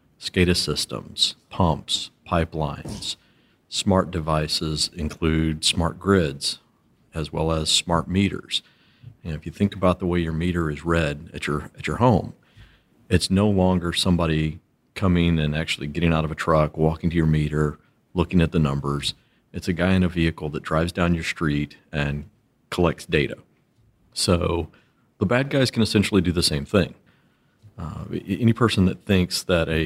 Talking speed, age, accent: 165 wpm, 50-69, American